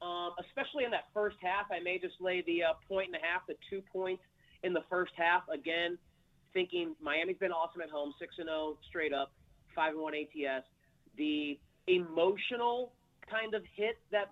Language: English